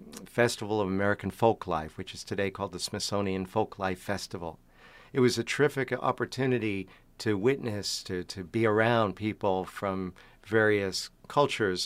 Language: English